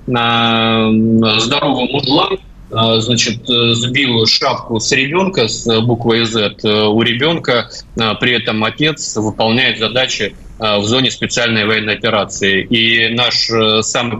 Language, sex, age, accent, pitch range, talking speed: Russian, male, 20-39, native, 110-125 Hz, 110 wpm